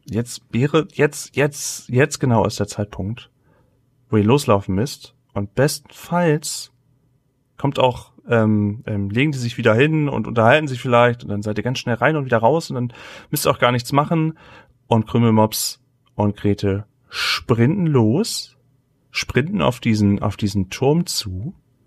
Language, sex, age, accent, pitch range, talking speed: German, male, 30-49, German, 110-140 Hz, 160 wpm